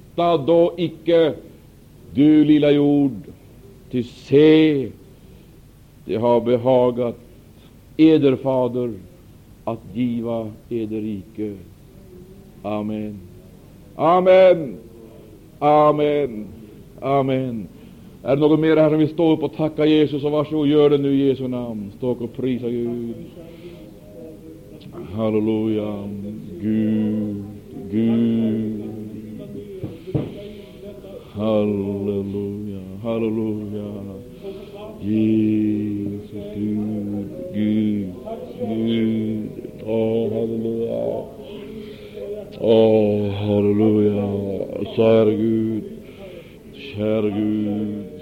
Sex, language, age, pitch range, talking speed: male, Swedish, 60-79, 105-145 Hz, 75 wpm